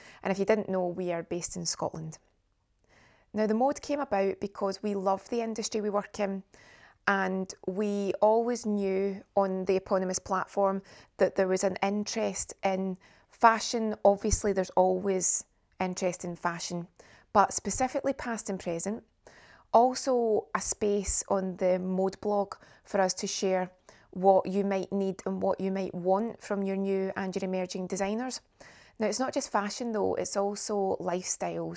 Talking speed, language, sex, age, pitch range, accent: 160 wpm, English, female, 20-39, 185-210 Hz, British